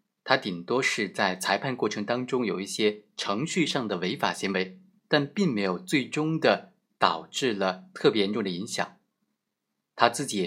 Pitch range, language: 100-150 Hz, Chinese